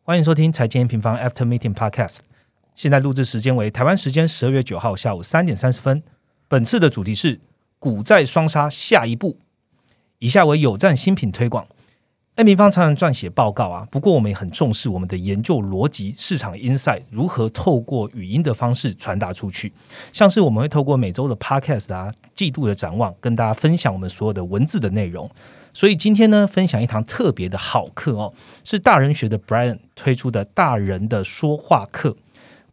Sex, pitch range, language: male, 110-150 Hz, Chinese